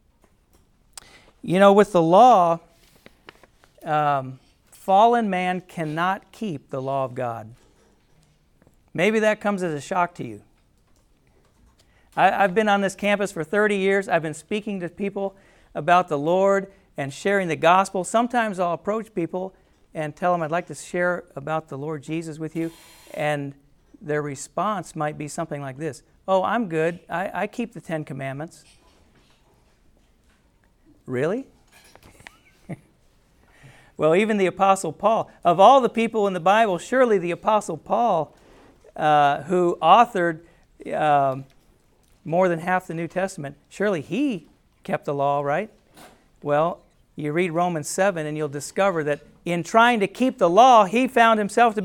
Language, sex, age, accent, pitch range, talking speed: English, male, 50-69, American, 155-205 Hz, 150 wpm